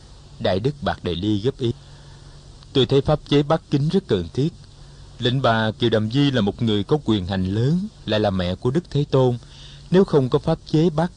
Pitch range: 100-140 Hz